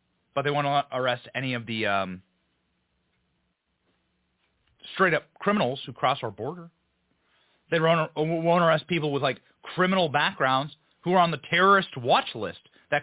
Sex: male